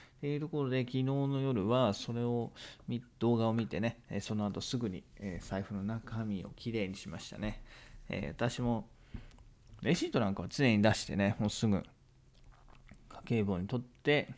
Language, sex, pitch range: Japanese, male, 100-125 Hz